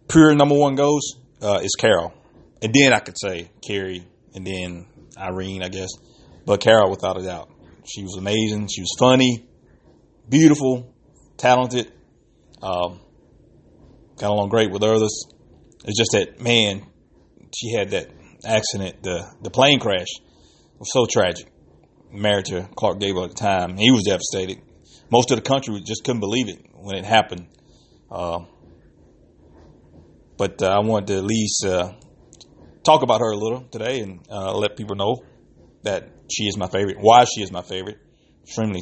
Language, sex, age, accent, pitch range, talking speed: English, male, 30-49, American, 95-115 Hz, 160 wpm